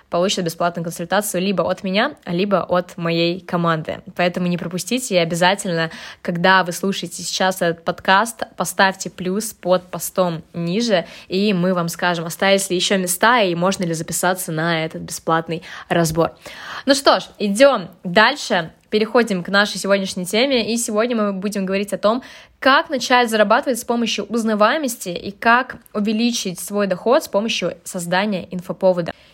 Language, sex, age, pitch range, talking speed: Russian, female, 20-39, 175-215 Hz, 150 wpm